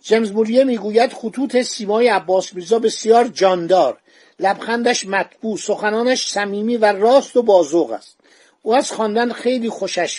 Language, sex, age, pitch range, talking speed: Persian, male, 50-69, 190-235 Hz, 135 wpm